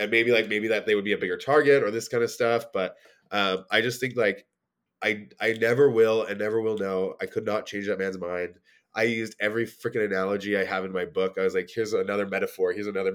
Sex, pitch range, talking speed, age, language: male, 95-145 Hz, 250 wpm, 20-39, English